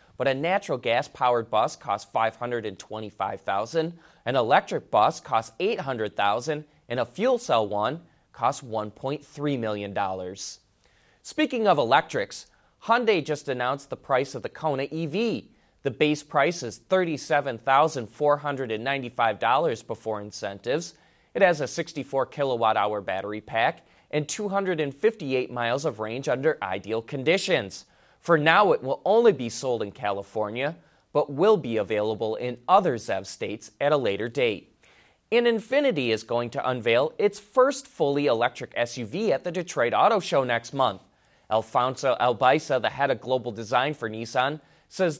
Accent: American